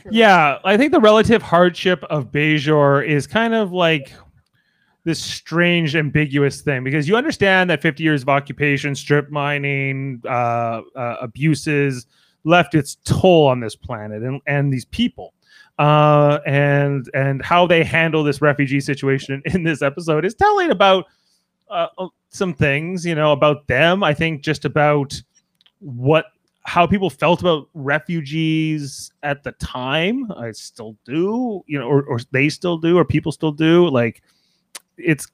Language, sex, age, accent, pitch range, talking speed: English, male, 30-49, American, 130-165 Hz, 155 wpm